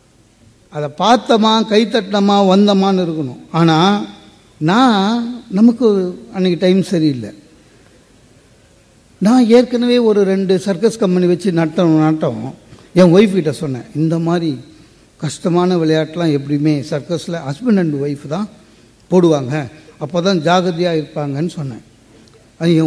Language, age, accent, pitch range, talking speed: English, 60-79, Indian, 145-205 Hz, 120 wpm